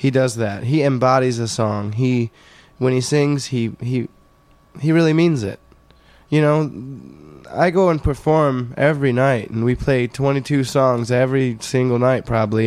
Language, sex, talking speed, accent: English, male, 160 wpm, American